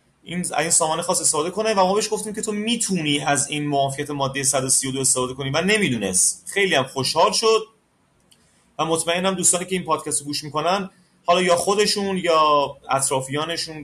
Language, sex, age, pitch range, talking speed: Persian, male, 30-49, 140-195 Hz, 175 wpm